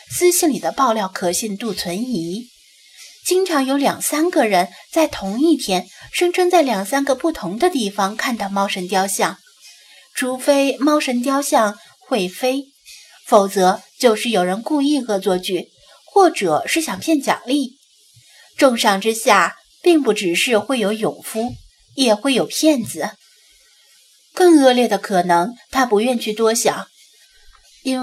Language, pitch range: Chinese, 205-275 Hz